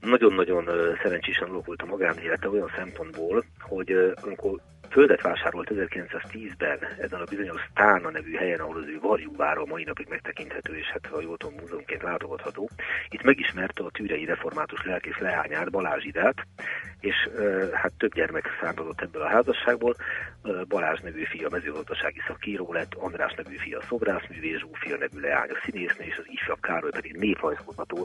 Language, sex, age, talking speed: Hungarian, male, 40-59, 160 wpm